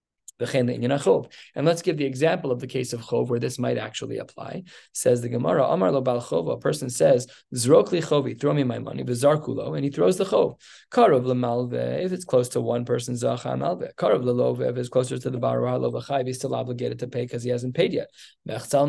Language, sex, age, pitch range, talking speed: English, male, 20-39, 120-140 Hz, 215 wpm